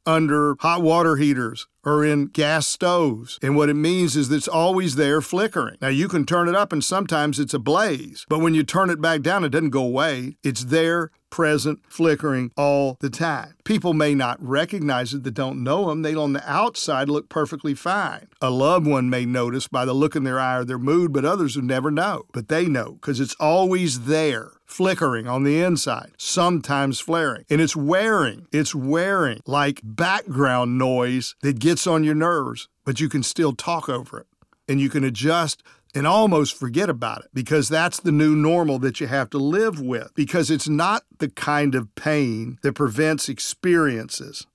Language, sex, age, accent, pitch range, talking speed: English, male, 50-69, American, 135-165 Hz, 195 wpm